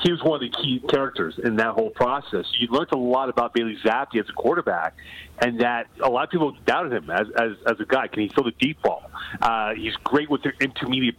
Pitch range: 120-155 Hz